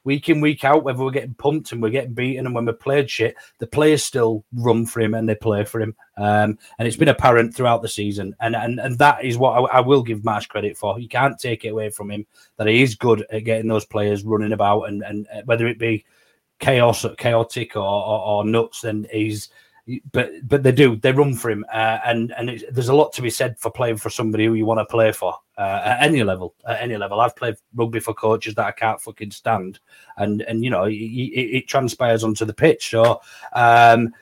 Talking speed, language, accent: 245 wpm, English, British